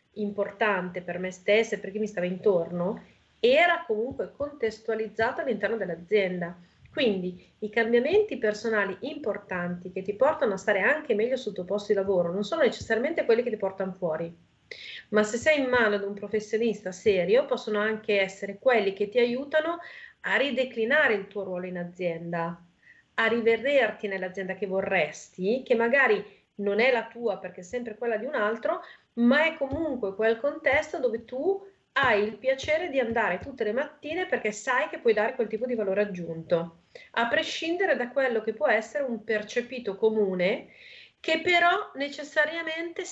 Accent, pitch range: native, 200-275 Hz